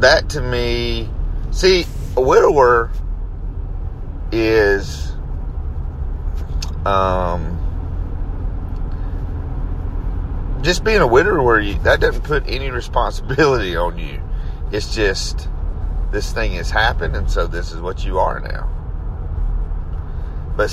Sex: male